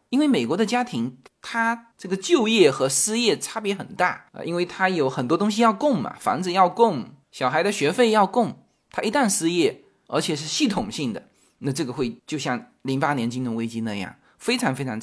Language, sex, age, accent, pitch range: Chinese, male, 20-39, native, 145-225 Hz